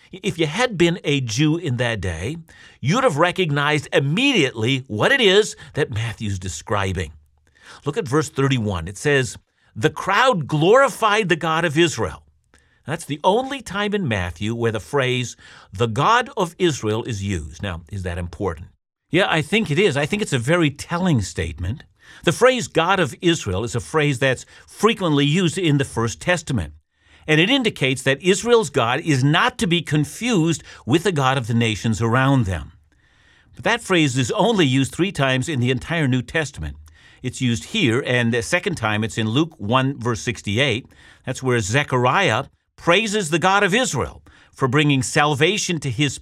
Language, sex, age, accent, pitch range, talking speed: English, male, 50-69, American, 115-170 Hz, 175 wpm